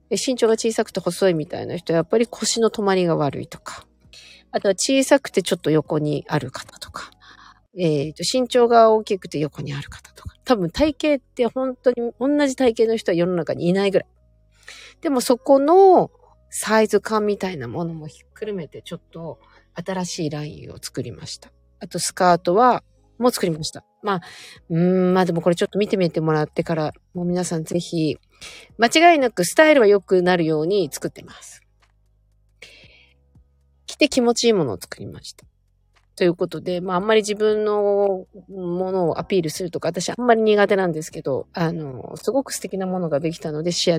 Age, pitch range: 40-59, 155-220 Hz